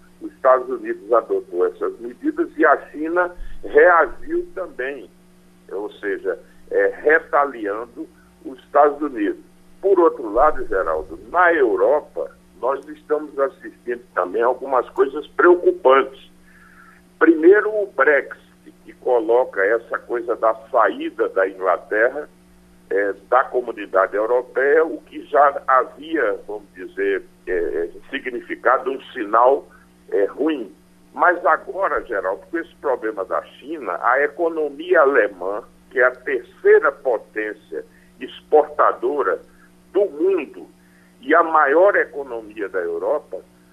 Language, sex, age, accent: Portuguese, male, 60-79, Brazilian